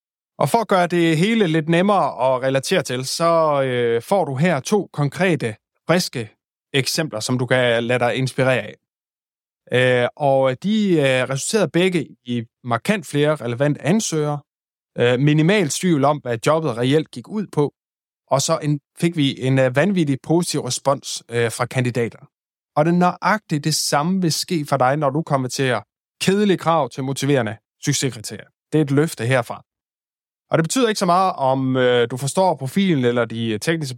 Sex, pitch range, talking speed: male, 130-170 Hz, 160 wpm